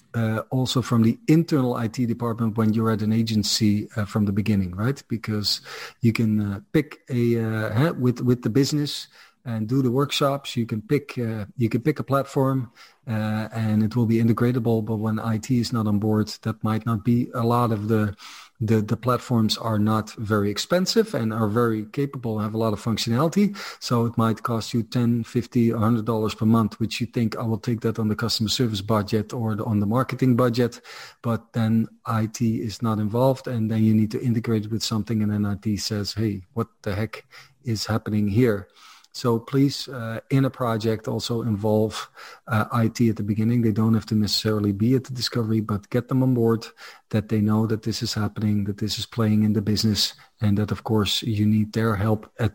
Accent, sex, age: Dutch, male, 40-59